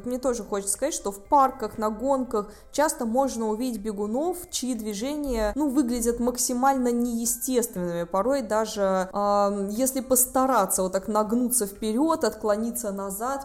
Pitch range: 200-250 Hz